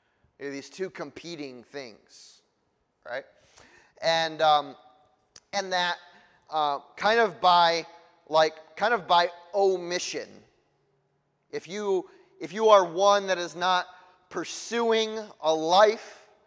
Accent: American